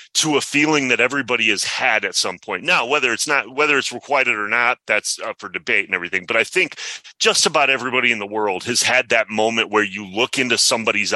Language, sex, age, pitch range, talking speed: English, male, 30-49, 115-145 Hz, 230 wpm